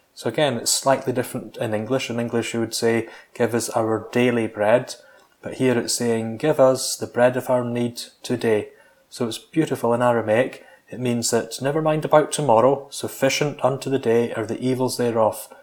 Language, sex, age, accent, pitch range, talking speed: English, male, 30-49, British, 115-130 Hz, 190 wpm